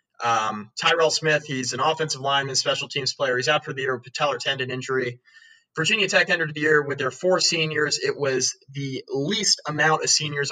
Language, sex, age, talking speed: English, male, 20-39, 205 wpm